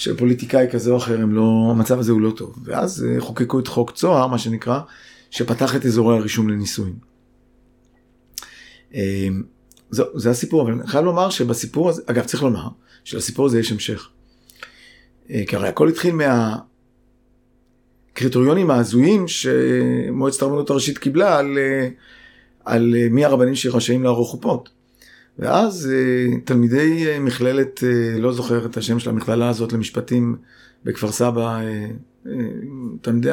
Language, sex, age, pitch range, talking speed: Hebrew, male, 30-49, 115-130 Hz, 125 wpm